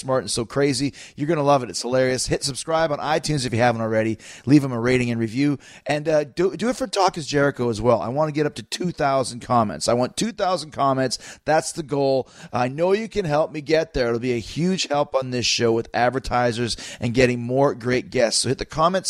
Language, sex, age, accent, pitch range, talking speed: English, male, 30-49, American, 120-160 Hz, 240 wpm